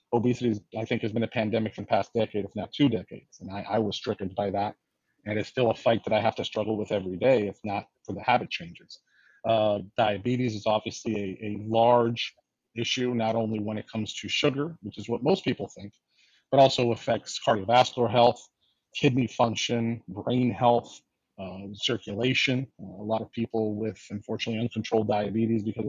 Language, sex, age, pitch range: English, male, 40-59, 105-120 Hz